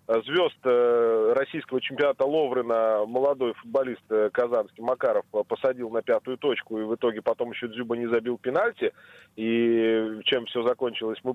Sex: male